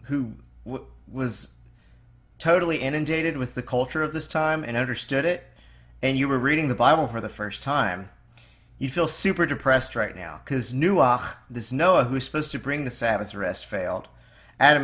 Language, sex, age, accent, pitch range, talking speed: English, male, 40-59, American, 105-155 Hz, 175 wpm